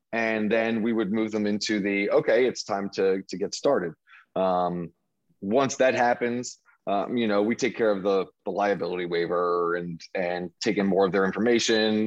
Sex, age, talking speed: male, 30-49, 190 wpm